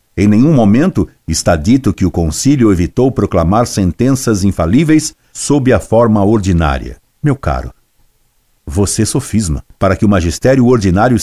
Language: Portuguese